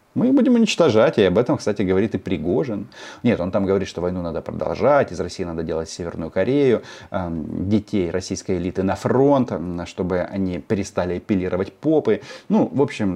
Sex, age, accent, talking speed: male, 30-49, native, 175 wpm